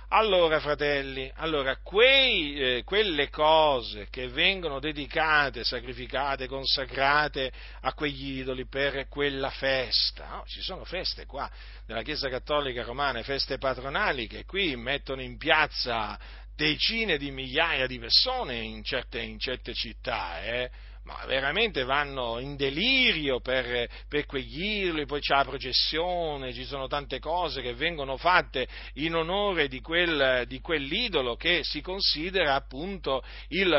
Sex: male